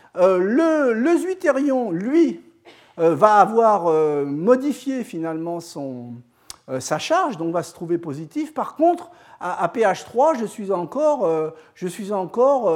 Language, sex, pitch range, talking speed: French, male, 165-250 Hz, 155 wpm